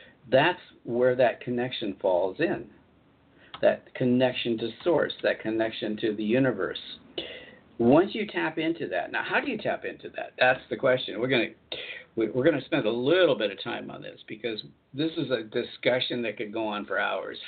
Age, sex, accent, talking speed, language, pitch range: 50-69, male, American, 185 wpm, English, 110-155 Hz